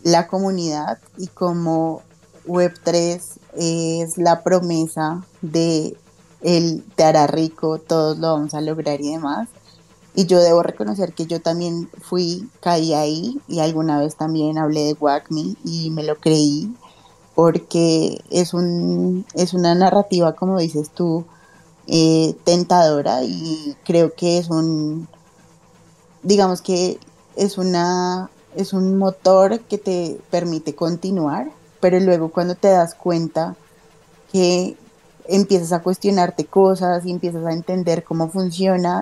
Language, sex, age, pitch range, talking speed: Spanish, female, 20-39, 160-180 Hz, 130 wpm